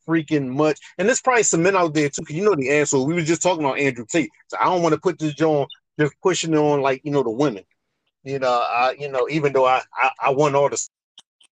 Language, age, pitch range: English, 30-49, 140-165 Hz